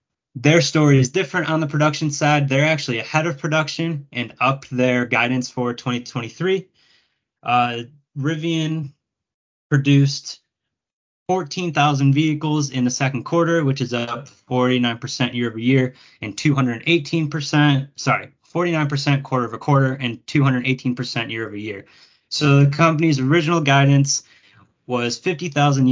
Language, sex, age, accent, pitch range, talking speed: English, male, 20-39, American, 120-150 Hz, 125 wpm